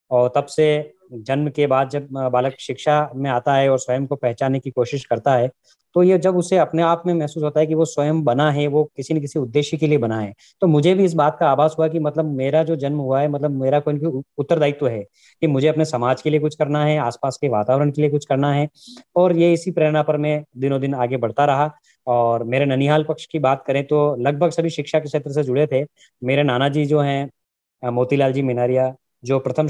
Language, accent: English, Indian